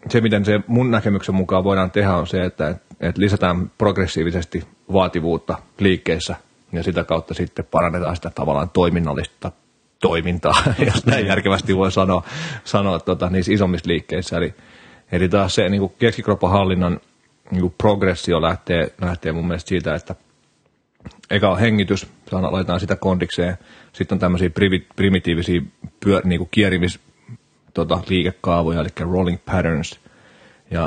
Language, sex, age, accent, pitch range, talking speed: Finnish, male, 30-49, native, 85-95 Hz, 135 wpm